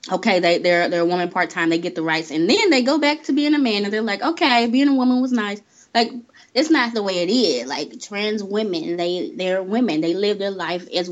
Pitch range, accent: 170-225 Hz, American